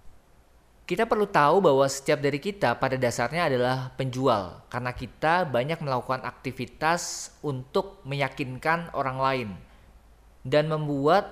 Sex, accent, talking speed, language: male, native, 115 wpm, Indonesian